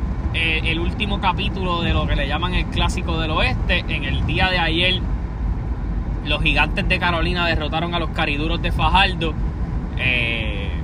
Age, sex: 20-39, male